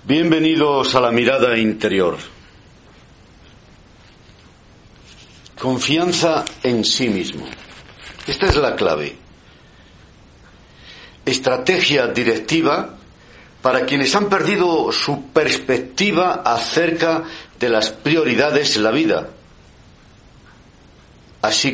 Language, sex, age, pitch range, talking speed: Spanish, male, 60-79, 110-160 Hz, 80 wpm